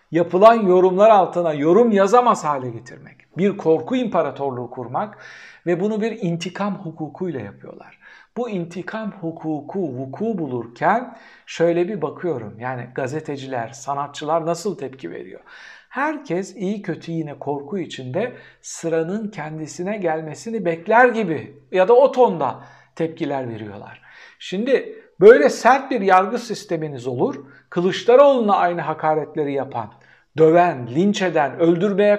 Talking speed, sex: 115 wpm, male